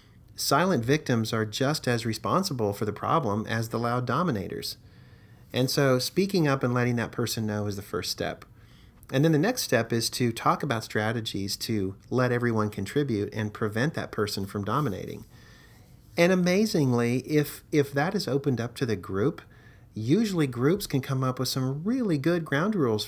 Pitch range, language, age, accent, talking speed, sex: 110-140 Hz, English, 40-59, American, 175 wpm, male